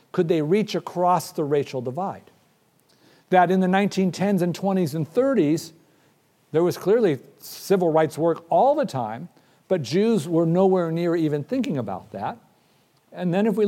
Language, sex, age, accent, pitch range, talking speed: English, male, 50-69, American, 140-195 Hz, 160 wpm